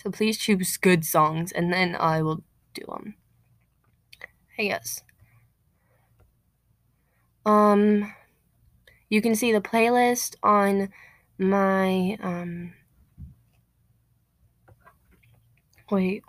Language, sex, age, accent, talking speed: English, female, 20-39, American, 85 wpm